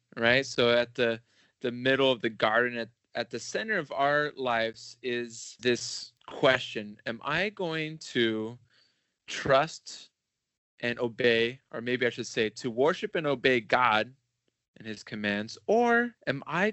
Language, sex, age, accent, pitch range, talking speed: English, male, 20-39, American, 115-145 Hz, 150 wpm